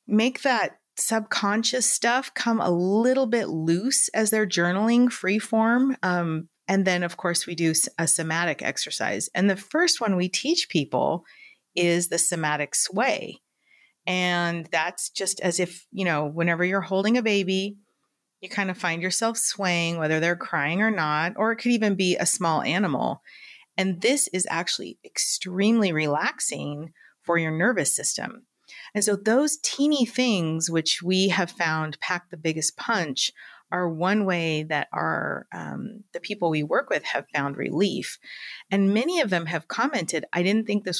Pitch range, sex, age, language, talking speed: 165-215 Hz, female, 30-49, English, 165 wpm